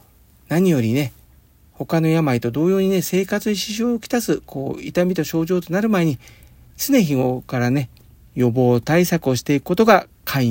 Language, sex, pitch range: Japanese, male, 120-190 Hz